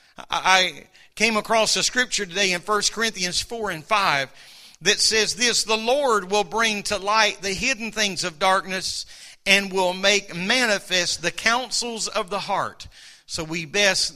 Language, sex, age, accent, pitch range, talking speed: English, male, 50-69, American, 185-225 Hz, 160 wpm